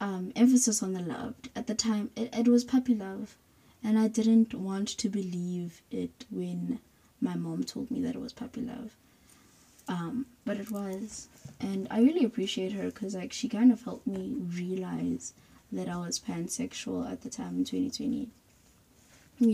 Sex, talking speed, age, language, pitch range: female, 170 wpm, 20-39, English, 190-260 Hz